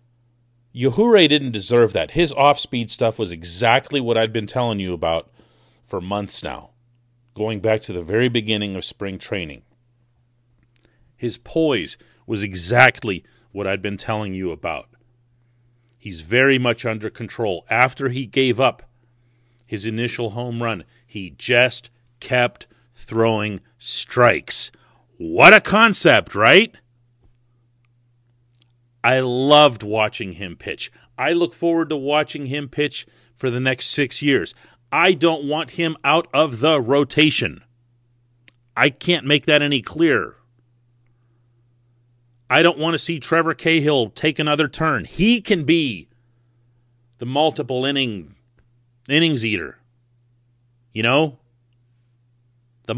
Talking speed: 125 wpm